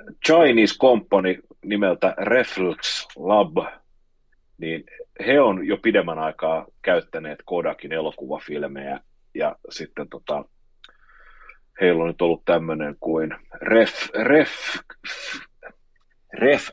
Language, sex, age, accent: Finnish, male, 40-59, native